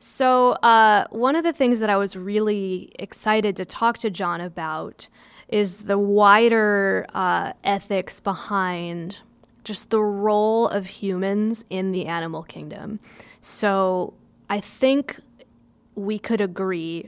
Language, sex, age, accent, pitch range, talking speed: English, female, 20-39, American, 195-230 Hz, 130 wpm